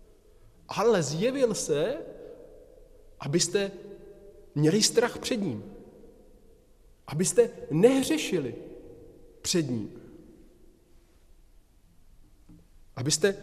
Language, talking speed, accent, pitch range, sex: Czech, 60 wpm, native, 110-170 Hz, male